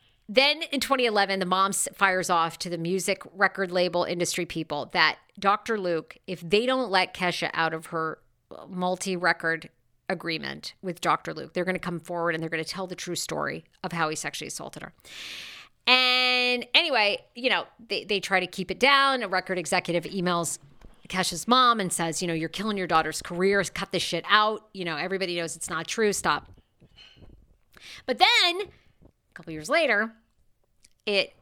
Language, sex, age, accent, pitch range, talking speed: English, female, 40-59, American, 165-205 Hz, 180 wpm